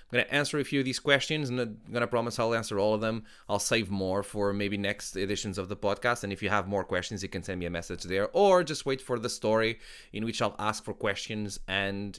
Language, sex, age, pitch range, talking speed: English, male, 20-39, 100-125 Hz, 270 wpm